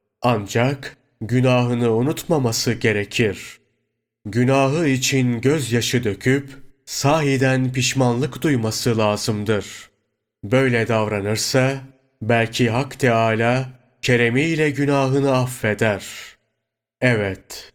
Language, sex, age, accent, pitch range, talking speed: Turkish, male, 30-49, native, 110-135 Hz, 70 wpm